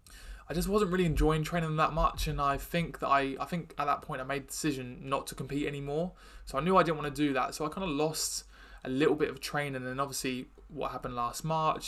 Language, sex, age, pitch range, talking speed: English, male, 20-39, 130-155 Hz, 260 wpm